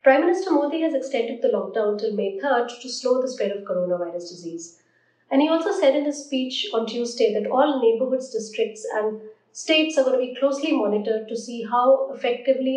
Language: English